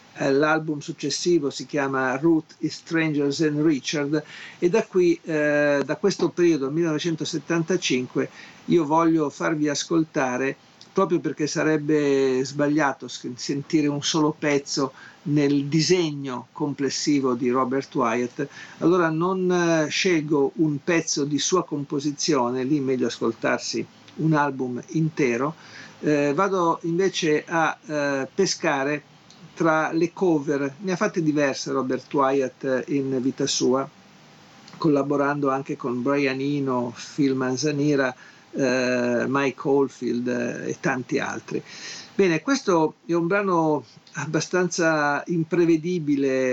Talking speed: 110 wpm